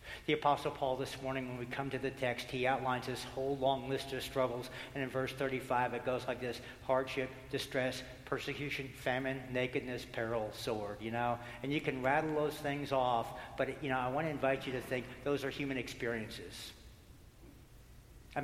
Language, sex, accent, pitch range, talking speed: English, male, American, 120-140 Hz, 190 wpm